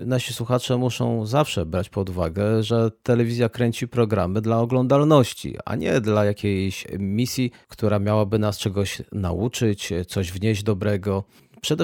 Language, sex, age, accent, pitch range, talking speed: Polish, male, 30-49, native, 100-130 Hz, 135 wpm